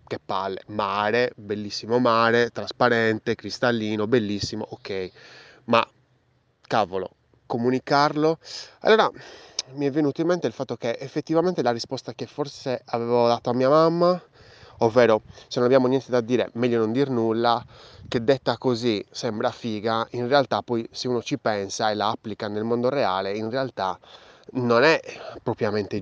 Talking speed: 150 wpm